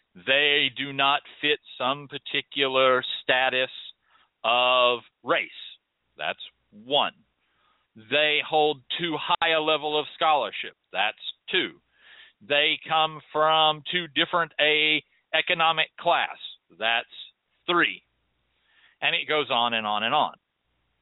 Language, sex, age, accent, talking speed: English, male, 40-59, American, 110 wpm